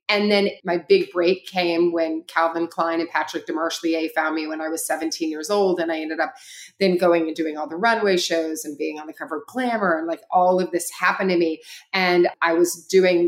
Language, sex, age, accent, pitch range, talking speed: English, female, 30-49, American, 165-200 Hz, 235 wpm